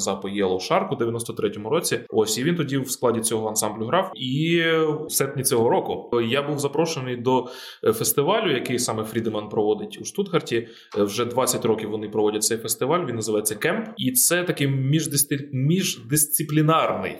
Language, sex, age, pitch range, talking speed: Ukrainian, male, 20-39, 115-145 Hz, 160 wpm